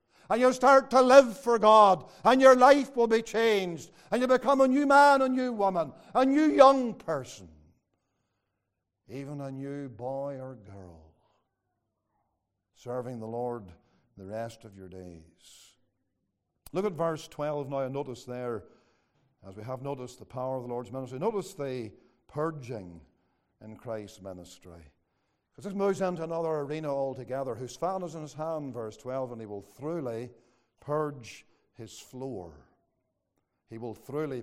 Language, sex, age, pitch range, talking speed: English, male, 60-79, 115-190 Hz, 155 wpm